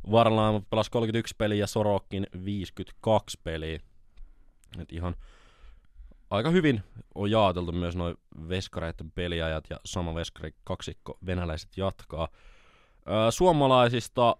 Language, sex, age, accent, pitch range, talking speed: Finnish, male, 20-39, native, 85-105 Hz, 110 wpm